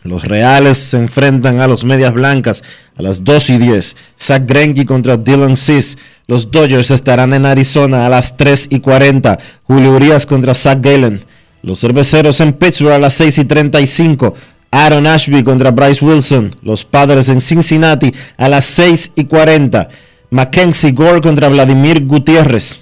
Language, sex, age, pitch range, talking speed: Spanish, male, 30-49, 130-155 Hz, 160 wpm